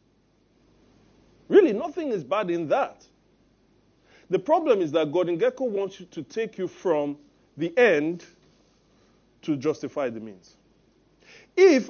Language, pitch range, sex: English, 180-285 Hz, male